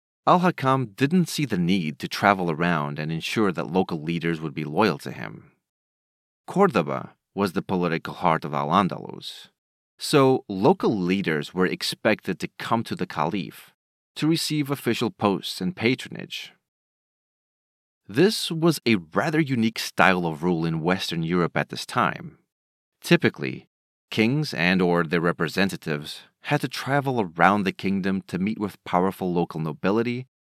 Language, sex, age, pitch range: English, male, 30-49, 90-135 Hz